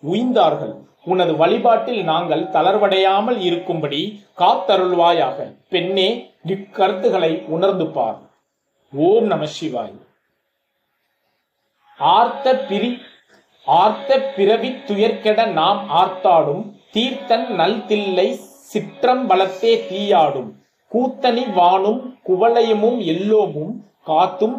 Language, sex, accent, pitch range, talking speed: Tamil, male, native, 180-235 Hz, 40 wpm